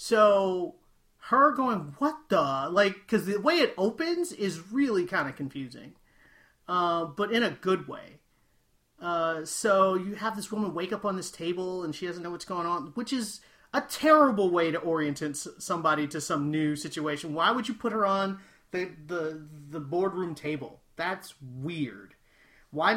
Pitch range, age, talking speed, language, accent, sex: 155-210 Hz, 30-49, 170 wpm, English, American, male